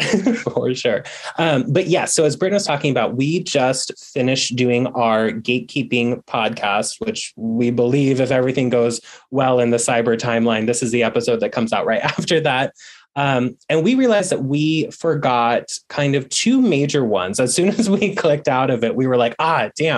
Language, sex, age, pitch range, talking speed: English, male, 20-39, 120-145 Hz, 190 wpm